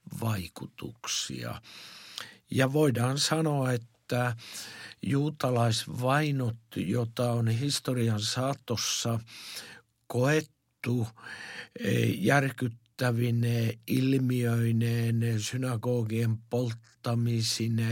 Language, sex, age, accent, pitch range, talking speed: Finnish, male, 60-79, native, 115-130 Hz, 50 wpm